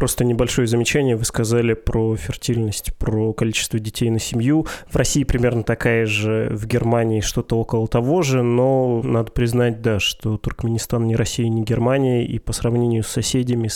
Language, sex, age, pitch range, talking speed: Russian, male, 20-39, 115-130 Hz, 165 wpm